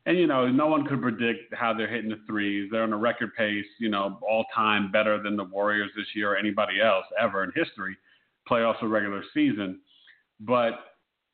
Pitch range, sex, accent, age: 105-130 Hz, male, American, 50-69